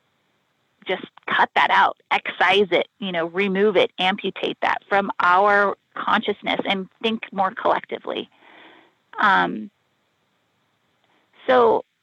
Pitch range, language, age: 195-245 Hz, English, 30-49